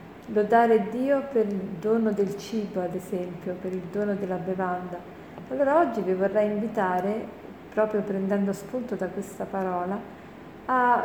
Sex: female